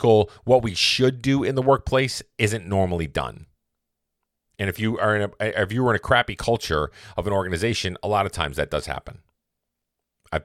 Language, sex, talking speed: English, male, 195 wpm